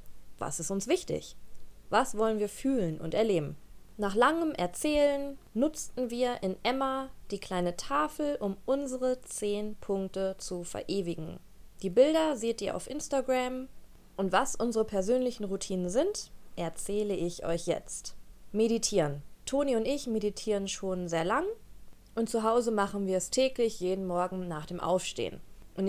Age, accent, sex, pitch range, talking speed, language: 20-39, German, female, 185-245 Hz, 145 wpm, German